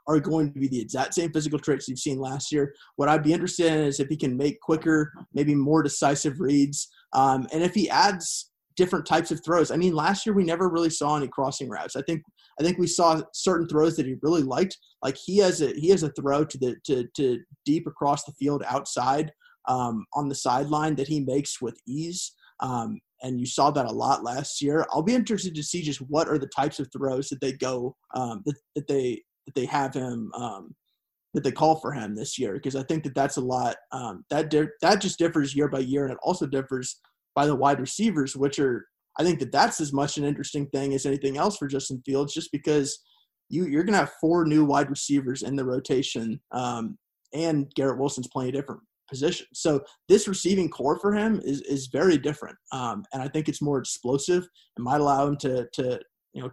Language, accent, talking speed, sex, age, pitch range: English, American, 225 wpm, male, 30-49, 135-160 Hz